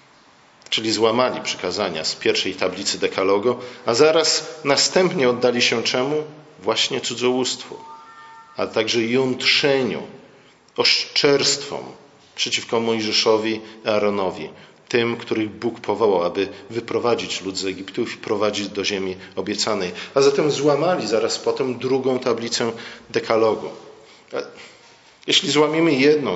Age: 40-59